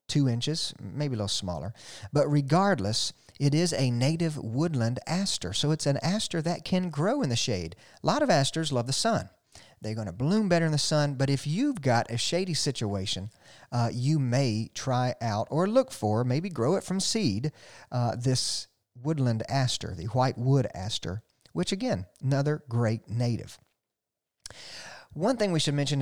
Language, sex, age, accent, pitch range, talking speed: English, male, 40-59, American, 115-155 Hz, 180 wpm